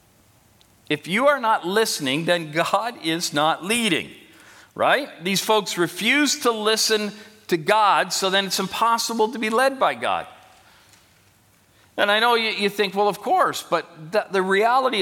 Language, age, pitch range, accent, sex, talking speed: English, 50-69, 130-195 Hz, American, male, 155 wpm